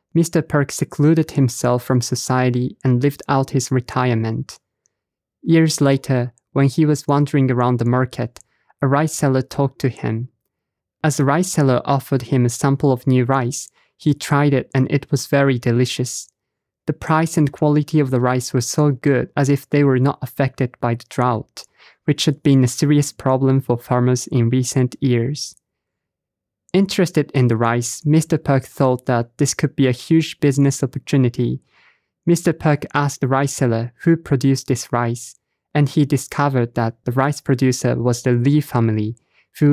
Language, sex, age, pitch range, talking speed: English, male, 20-39, 125-145 Hz, 170 wpm